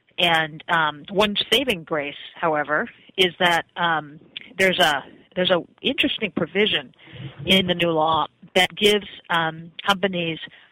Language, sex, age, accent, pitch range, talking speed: English, female, 40-59, American, 155-185 Hz, 130 wpm